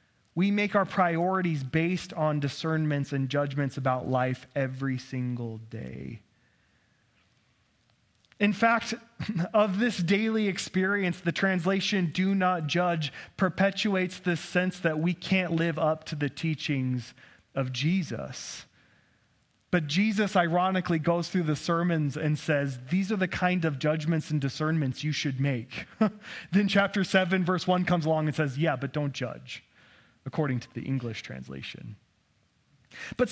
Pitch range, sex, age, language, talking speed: 145-195 Hz, male, 30-49, English, 140 wpm